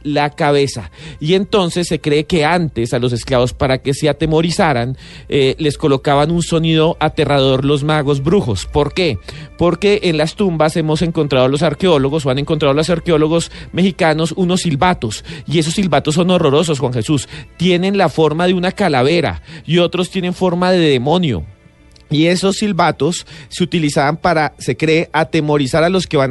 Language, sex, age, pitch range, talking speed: English, male, 30-49, 145-185 Hz, 175 wpm